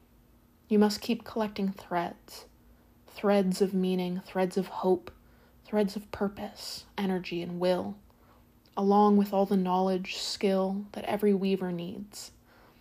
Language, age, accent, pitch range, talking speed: English, 30-49, American, 180-200 Hz, 125 wpm